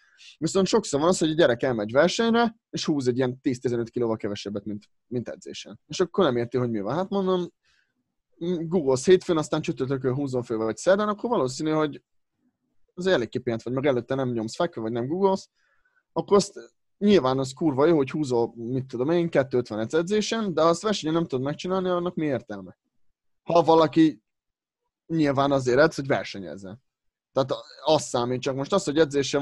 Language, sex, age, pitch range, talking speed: Hungarian, male, 30-49, 125-175 Hz, 180 wpm